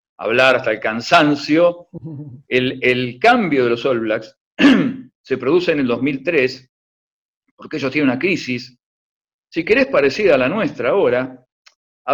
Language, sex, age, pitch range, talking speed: Spanish, male, 50-69, 130-210 Hz, 145 wpm